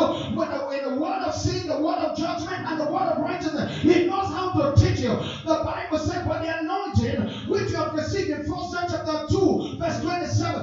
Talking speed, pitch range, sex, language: 180 wpm, 310-345 Hz, male, English